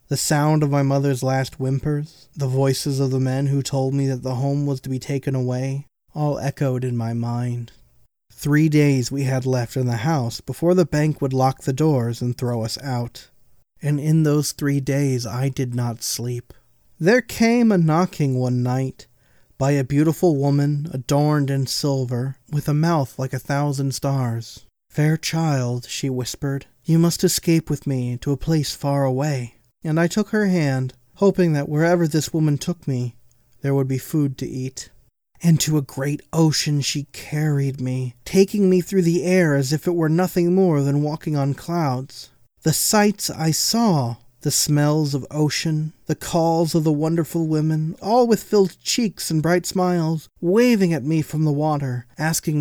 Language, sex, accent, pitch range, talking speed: English, male, American, 130-165 Hz, 180 wpm